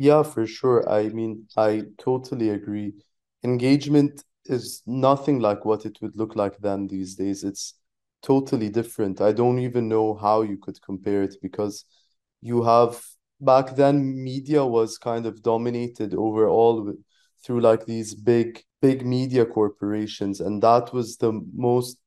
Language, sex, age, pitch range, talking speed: English, male, 20-39, 105-125 Hz, 150 wpm